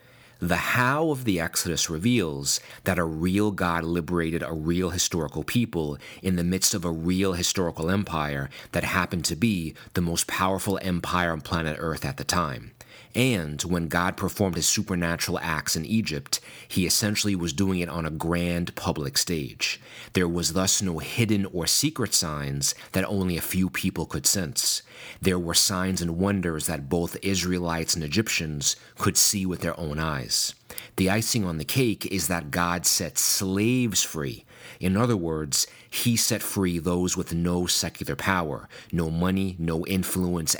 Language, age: English, 30-49